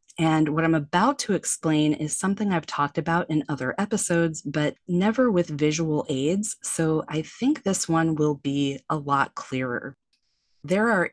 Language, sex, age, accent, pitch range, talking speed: English, female, 20-39, American, 150-185 Hz, 165 wpm